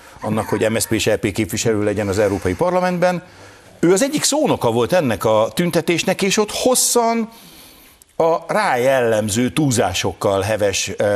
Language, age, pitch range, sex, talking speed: Hungarian, 60-79, 95-145 Hz, male, 135 wpm